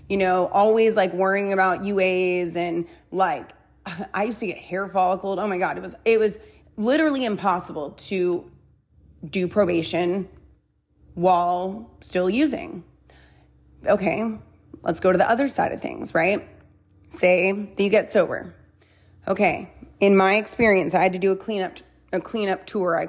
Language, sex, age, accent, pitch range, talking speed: English, female, 30-49, American, 180-210 Hz, 155 wpm